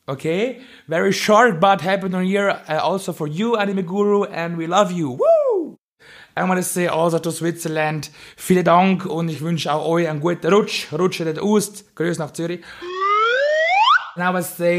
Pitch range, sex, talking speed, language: 150-175 Hz, male, 125 wpm, English